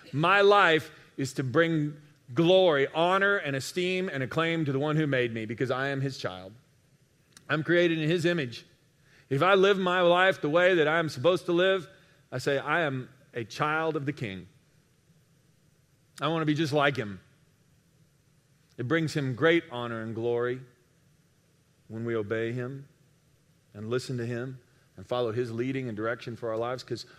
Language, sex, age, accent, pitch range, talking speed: English, male, 40-59, American, 135-170 Hz, 180 wpm